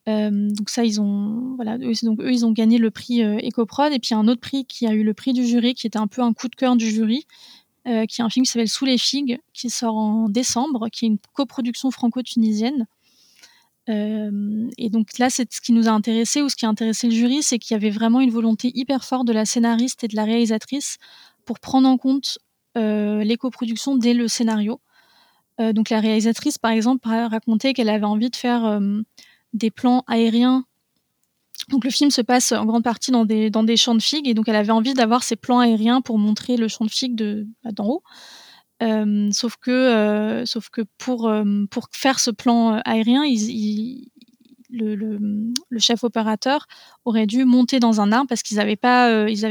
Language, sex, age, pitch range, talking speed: French, female, 20-39, 220-250 Hz, 215 wpm